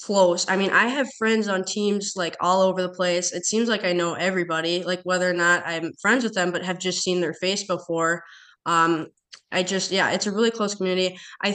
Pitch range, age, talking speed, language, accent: 165-185 Hz, 20-39, 230 wpm, English, American